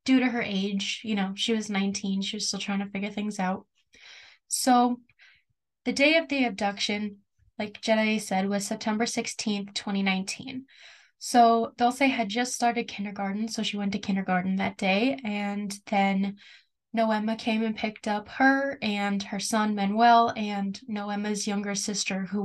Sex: female